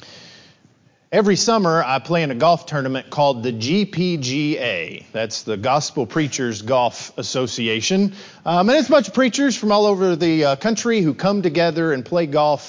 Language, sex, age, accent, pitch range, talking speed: English, male, 40-59, American, 150-220 Hz, 170 wpm